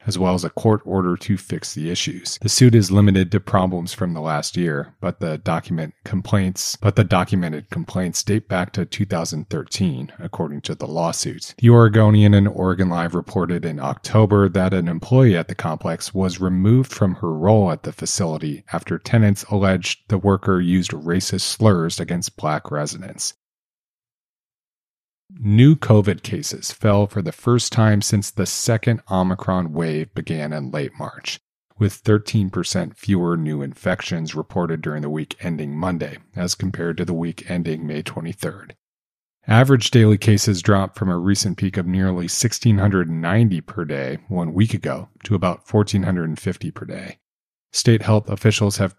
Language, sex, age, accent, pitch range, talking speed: English, male, 40-59, American, 85-105 Hz, 160 wpm